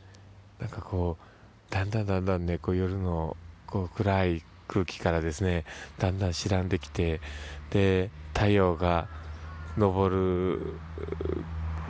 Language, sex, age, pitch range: Japanese, male, 20-39, 85-105 Hz